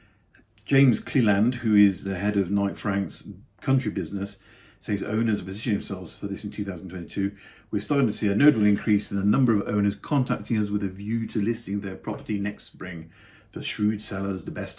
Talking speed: 195 wpm